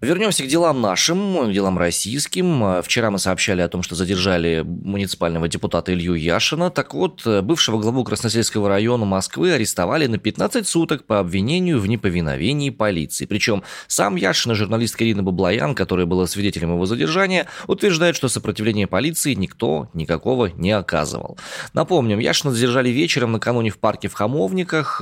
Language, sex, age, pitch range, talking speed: Russian, male, 20-39, 100-140 Hz, 145 wpm